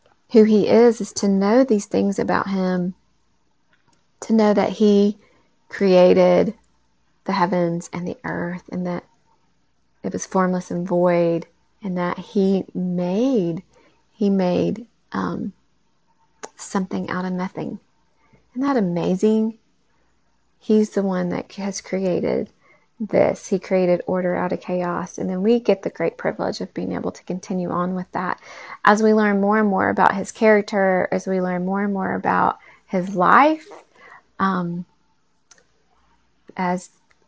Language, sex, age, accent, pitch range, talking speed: English, female, 30-49, American, 180-205 Hz, 145 wpm